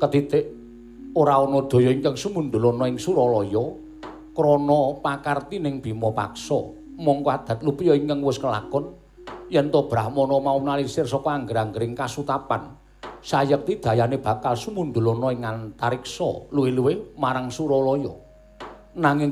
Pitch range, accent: 125-160 Hz, native